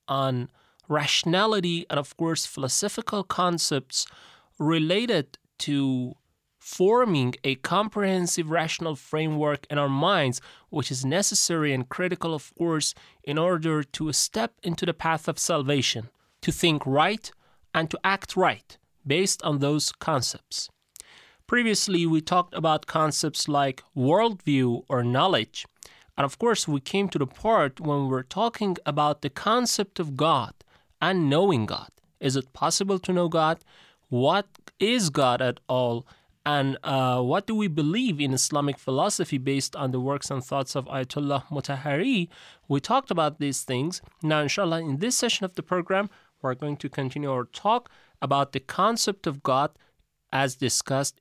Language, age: Persian, 30-49